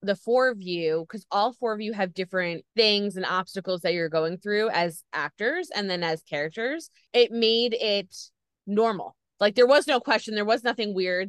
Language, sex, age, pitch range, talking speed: English, female, 20-39, 185-225 Hz, 195 wpm